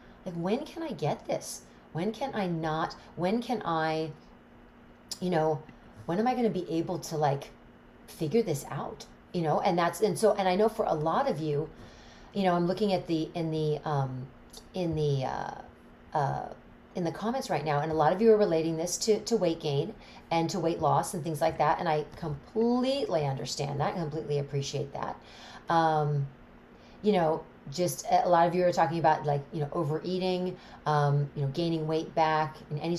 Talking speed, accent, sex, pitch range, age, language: 200 wpm, American, female, 150-185 Hz, 40-59, English